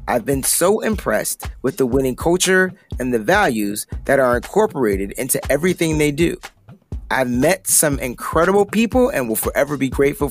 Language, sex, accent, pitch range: English, male, American, 120-175 Hz